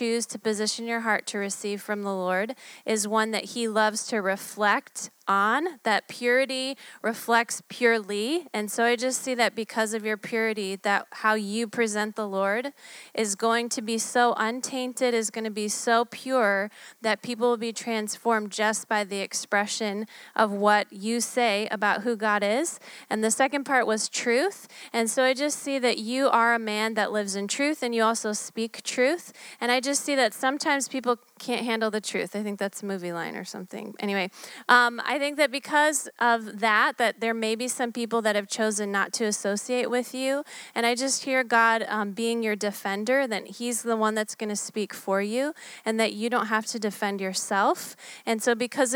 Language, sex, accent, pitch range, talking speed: English, female, American, 205-240 Hz, 200 wpm